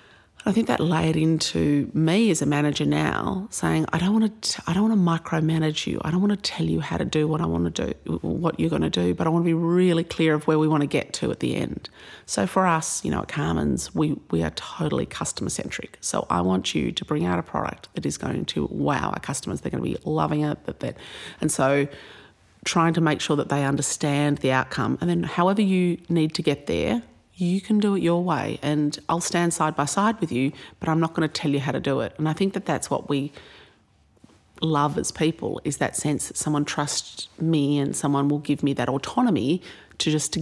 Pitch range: 140-170 Hz